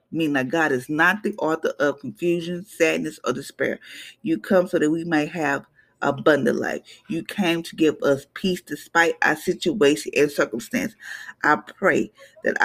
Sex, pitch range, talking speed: female, 155-215 Hz, 165 wpm